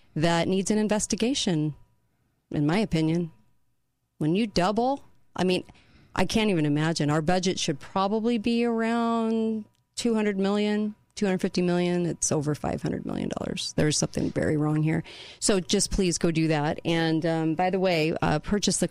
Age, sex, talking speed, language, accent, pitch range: 40-59, female, 155 wpm, English, American, 155-180 Hz